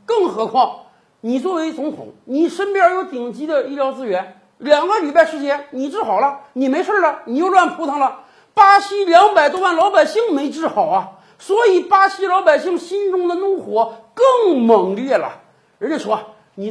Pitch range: 230-345 Hz